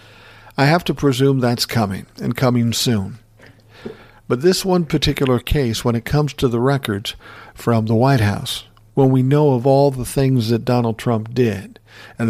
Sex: male